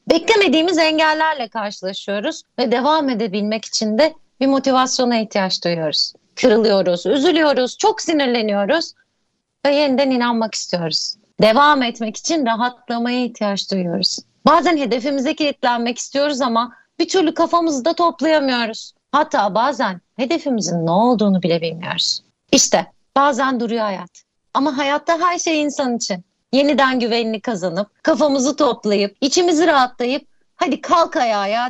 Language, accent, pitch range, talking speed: Turkish, native, 205-295 Hz, 120 wpm